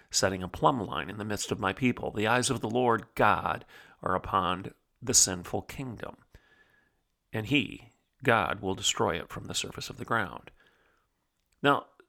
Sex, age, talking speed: male, 40-59, 170 wpm